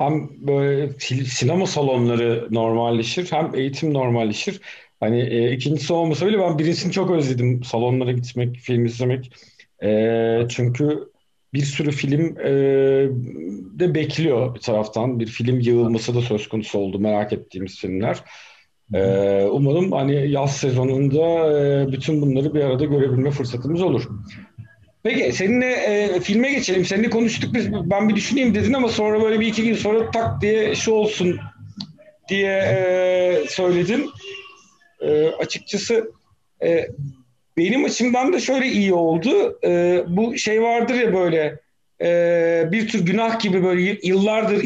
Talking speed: 140 wpm